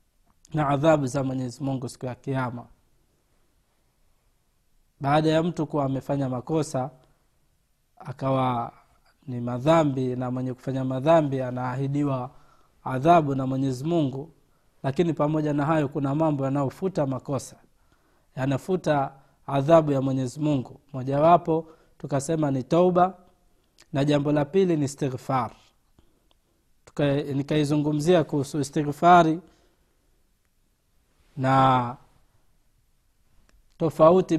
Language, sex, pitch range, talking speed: Swahili, male, 130-165 Hz, 95 wpm